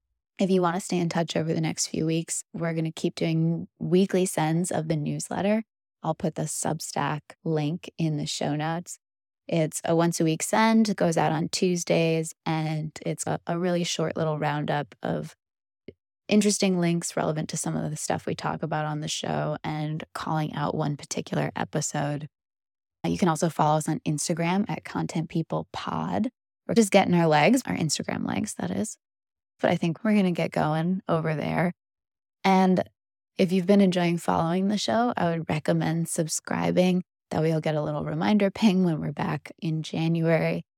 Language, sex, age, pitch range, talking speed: English, female, 20-39, 155-180 Hz, 180 wpm